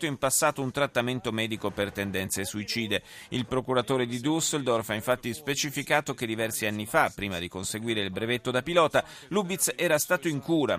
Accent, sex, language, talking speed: native, male, Italian, 175 wpm